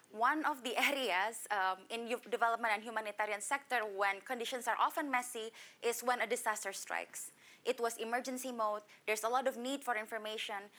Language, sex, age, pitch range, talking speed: English, female, 20-39, 210-250 Hz, 170 wpm